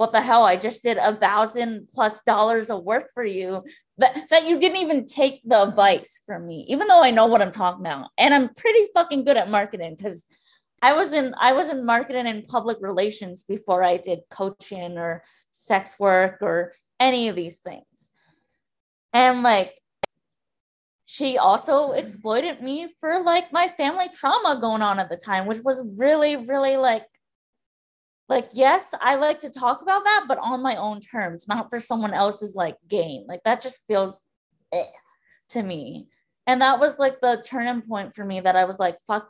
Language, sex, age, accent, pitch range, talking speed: English, female, 20-39, American, 195-270 Hz, 185 wpm